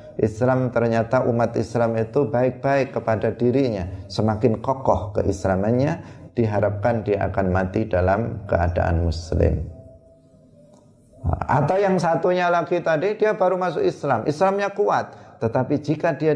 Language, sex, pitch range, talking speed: Indonesian, male, 100-135 Hz, 120 wpm